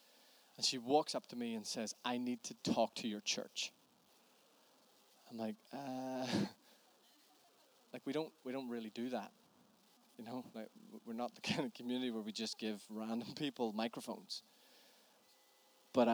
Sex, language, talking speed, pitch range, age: male, Danish, 160 wpm, 110-155 Hz, 20-39